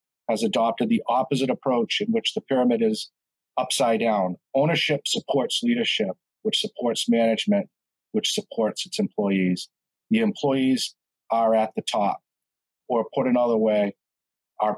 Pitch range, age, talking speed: 115-150 Hz, 40-59, 135 wpm